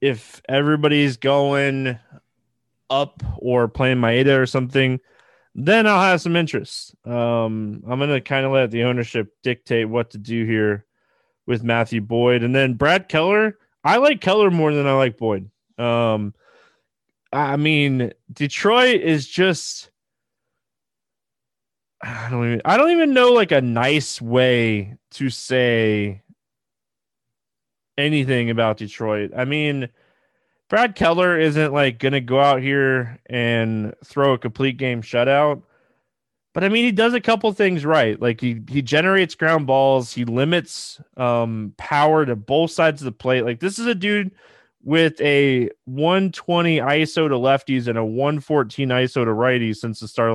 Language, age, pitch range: English, 20-39, 120-160 Hz